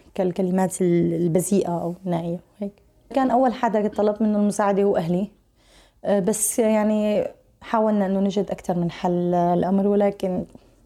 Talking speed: 125 wpm